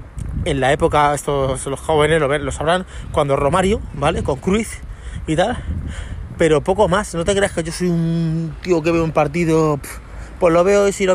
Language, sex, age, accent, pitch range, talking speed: Spanish, male, 30-49, Spanish, 130-180 Hz, 190 wpm